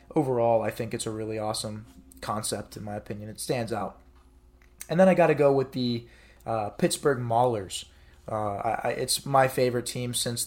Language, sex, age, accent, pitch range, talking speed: English, male, 20-39, American, 105-125 Hz, 185 wpm